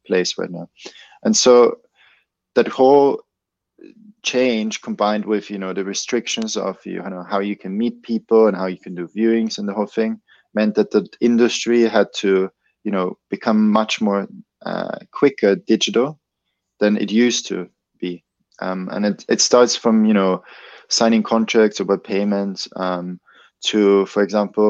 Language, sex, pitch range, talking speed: English, male, 100-120 Hz, 165 wpm